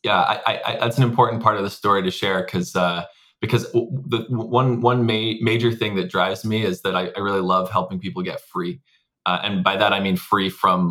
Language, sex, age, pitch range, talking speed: English, male, 20-39, 95-120 Hz, 225 wpm